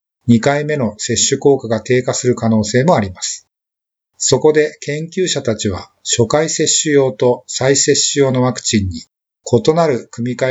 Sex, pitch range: male, 115-150 Hz